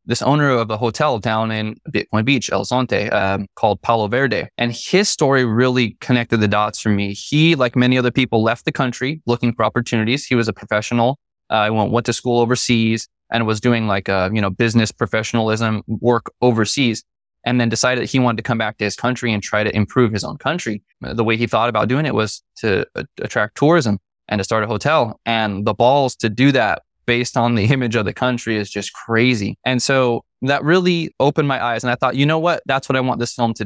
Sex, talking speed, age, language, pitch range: male, 230 wpm, 20-39, English, 110-130 Hz